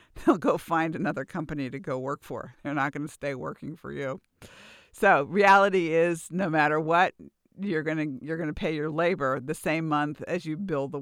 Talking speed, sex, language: 210 wpm, female, English